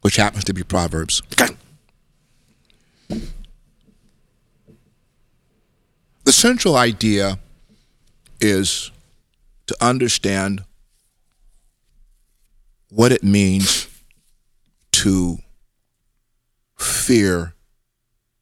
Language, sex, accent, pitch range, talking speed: English, male, American, 95-120 Hz, 50 wpm